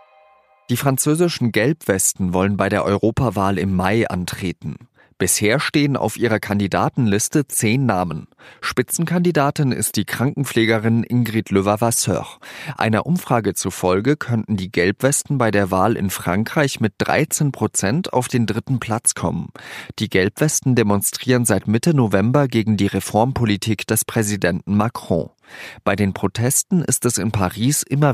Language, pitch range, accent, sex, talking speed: German, 95-125 Hz, German, male, 130 wpm